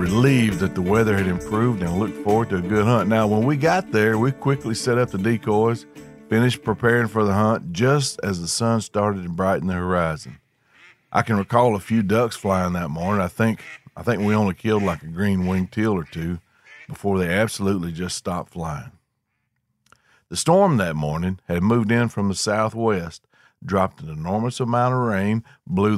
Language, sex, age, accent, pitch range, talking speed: English, male, 50-69, American, 90-120 Hz, 190 wpm